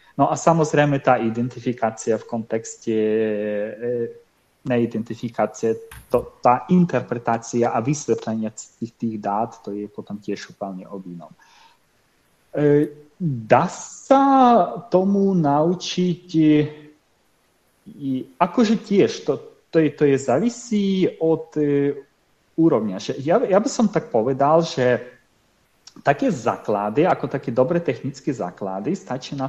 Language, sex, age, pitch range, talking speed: Slovak, male, 30-49, 120-165 Hz, 100 wpm